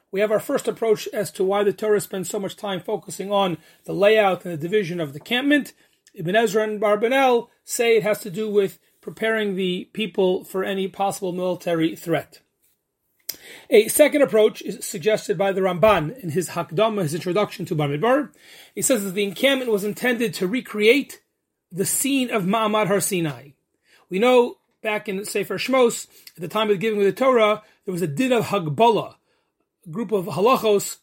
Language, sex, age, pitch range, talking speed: English, male, 30-49, 185-220 Hz, 185 wpm